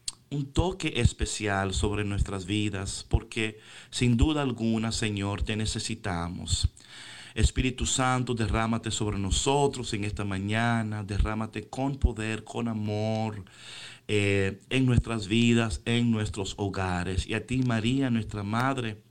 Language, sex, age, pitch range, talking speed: Spanish, male, 50-69, 105-125 Hz, 120 wpm